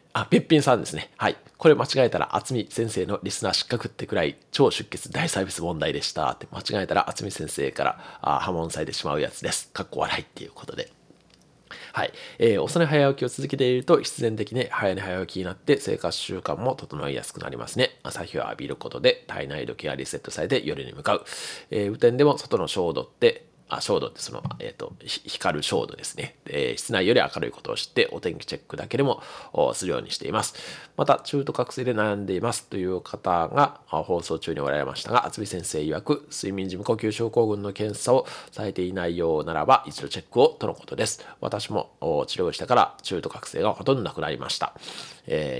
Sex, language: male, Japanese